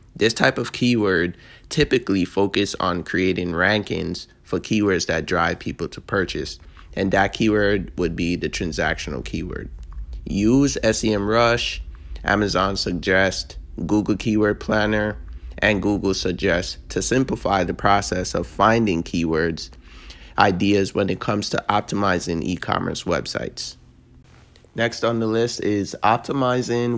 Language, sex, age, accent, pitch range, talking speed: English, male, 20-39, American, 90-105 Hz, 120 wpm